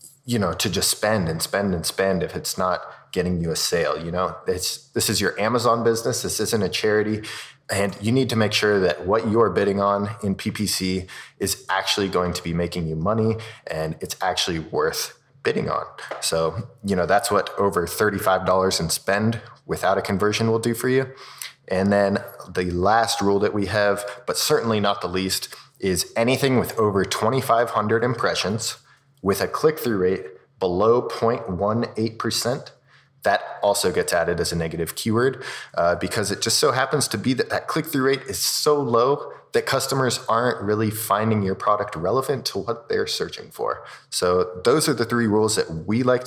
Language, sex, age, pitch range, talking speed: English, male, 20-39, 95-115 Hz, 180 wpm